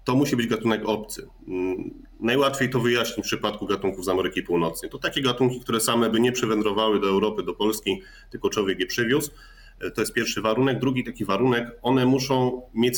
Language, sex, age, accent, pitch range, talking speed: Polish, male, 30-49, native, 100-120 Hz, 185 wpm